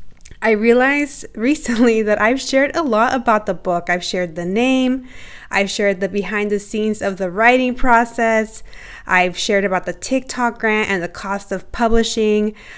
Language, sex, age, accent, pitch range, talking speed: English, female, 20-39, American, 195-235 Hz, 170 wpm